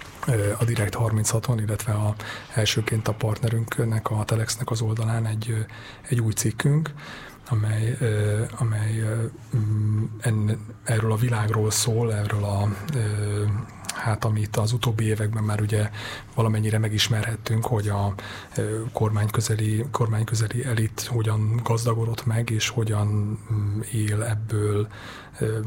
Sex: male